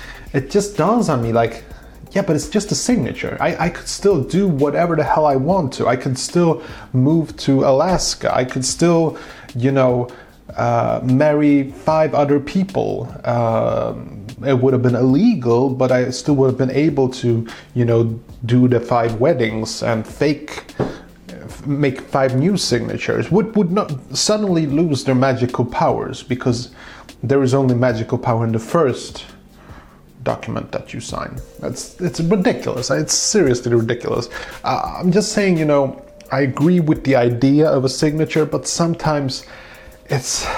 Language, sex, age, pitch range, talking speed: English, male, 30-49, 125-165 Hz, 160 wpm